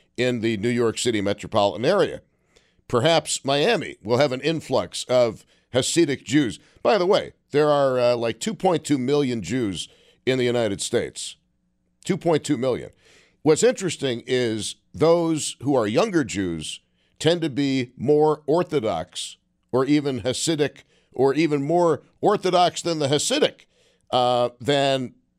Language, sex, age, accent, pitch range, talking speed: English, male, 50-69, American, 110-145 Hz, 135 wpm